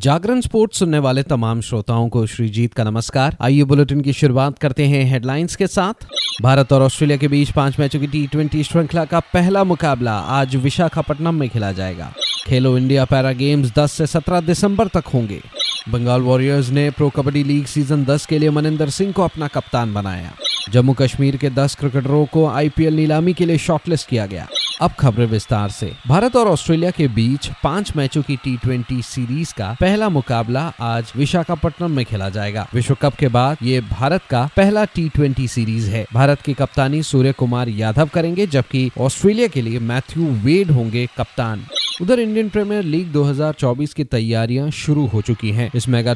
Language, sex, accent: Hindi, male, native